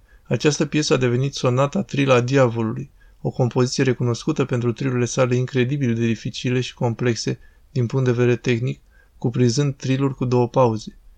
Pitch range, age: 120-135 Hz, 20-39